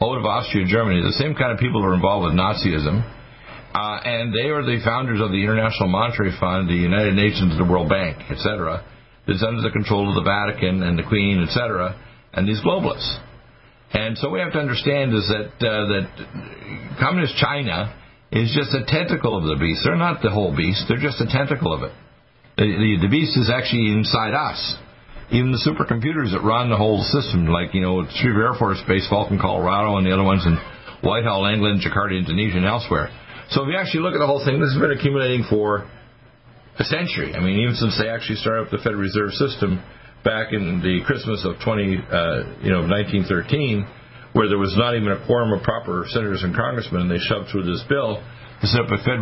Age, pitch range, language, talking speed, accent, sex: 50-69, 95-120 Hz, English, 210 wpm, American, male